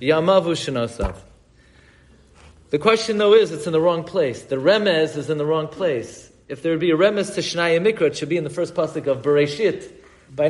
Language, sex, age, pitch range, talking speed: English, male, 40-59, 140-185 Hz, 200 wpm